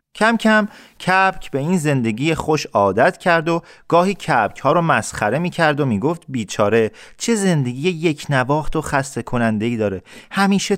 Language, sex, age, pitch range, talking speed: Persian, male, 30-49, 125-180 Hz, 160 wpm